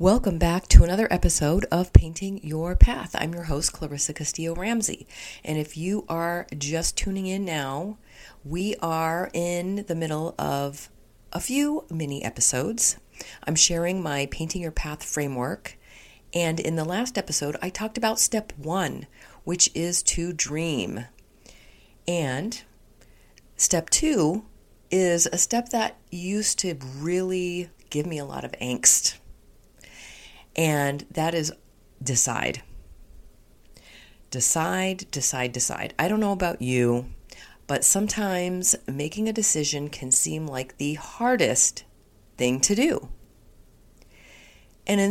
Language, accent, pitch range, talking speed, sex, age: English, American, 140-195 Hz, 130 wpm, female, 40-59